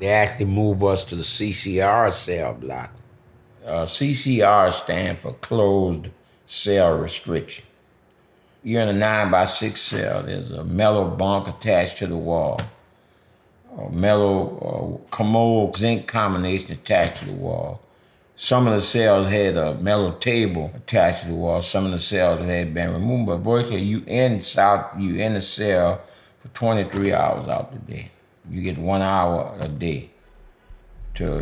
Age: 60-79